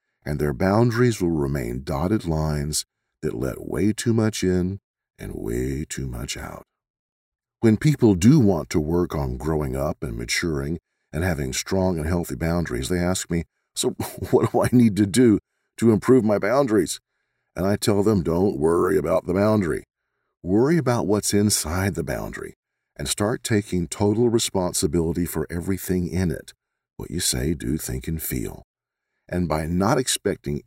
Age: 50-69